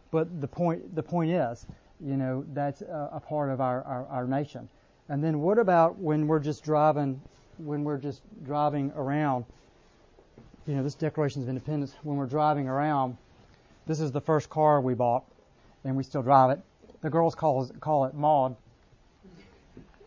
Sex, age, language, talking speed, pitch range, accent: male, 40-59, English, 175 wpm, 135-165 Hz, American